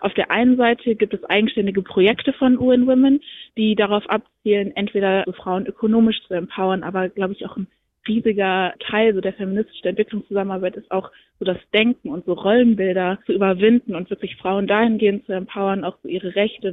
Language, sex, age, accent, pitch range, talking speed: German, female, 20-39, German, 190-230 Hz, 175 wpm